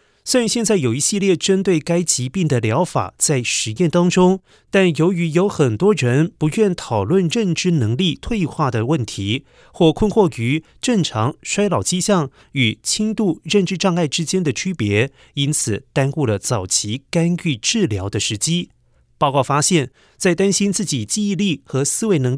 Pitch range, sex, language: 125-180 Hz, male, Chinese